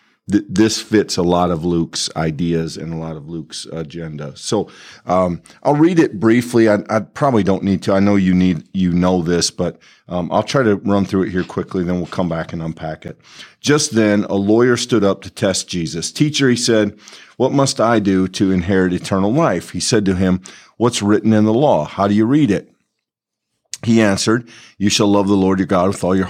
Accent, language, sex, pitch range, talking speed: American, English, male, 90-110 Hz, 220 wpm